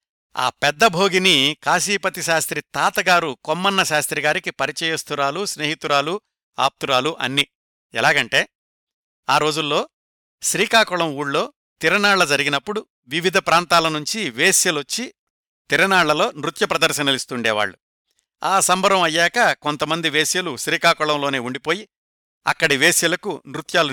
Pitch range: 135-175 Hz